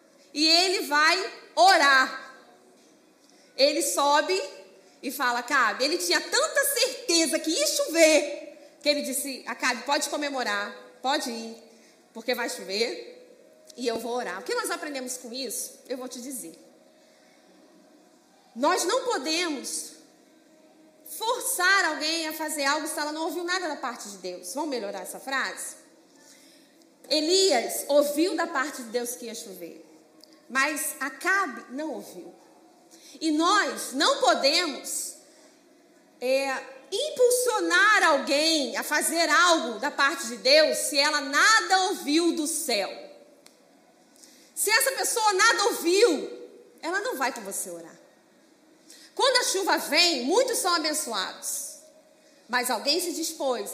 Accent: Brazilian